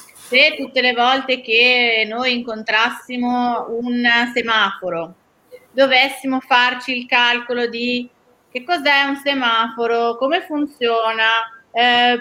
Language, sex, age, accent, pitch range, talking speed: Italian, female, 30-49, native, 220-265 Hz, 105 wpm